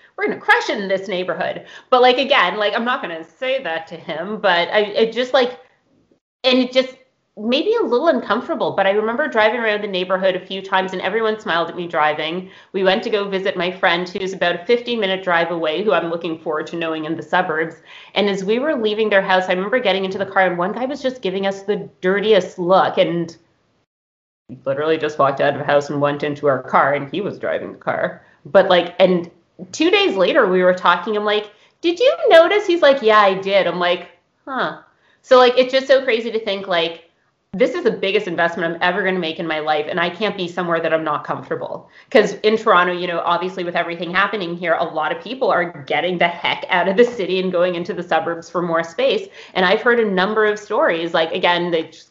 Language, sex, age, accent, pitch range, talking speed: English, female, 30-49, American, 165-210 Hz, 235 wpm